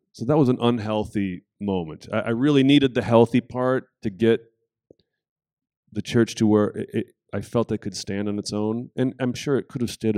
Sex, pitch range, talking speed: male, 90-115 Hz, 210 wpm